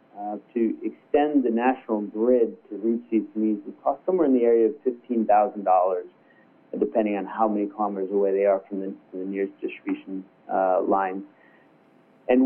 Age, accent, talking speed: 40-59, American, 155 wpm